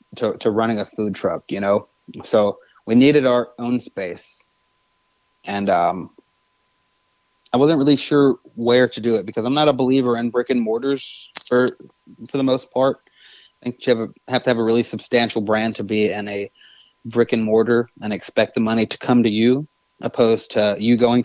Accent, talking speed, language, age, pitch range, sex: American, 190 wpm, English, 30-49, 110-130 Hz, male